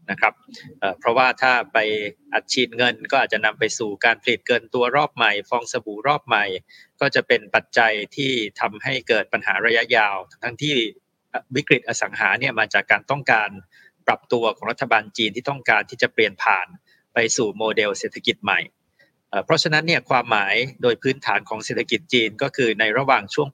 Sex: male